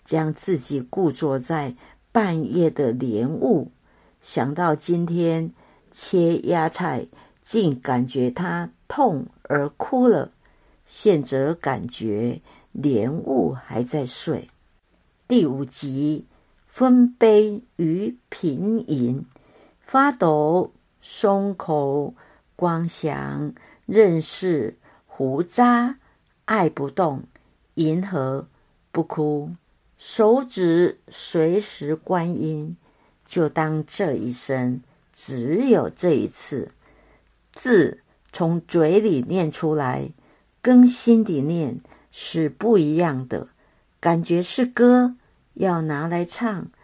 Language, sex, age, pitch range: Chinese, female, 60-79, 145-195 Hz